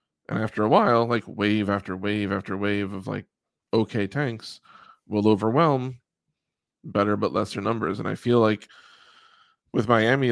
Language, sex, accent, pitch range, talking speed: English, male, American, 100-130 Hz, 150 wpm